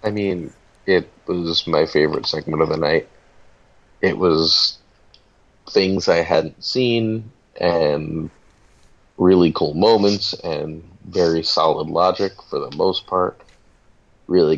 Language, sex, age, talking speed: English, male, 30-49, 120 wpm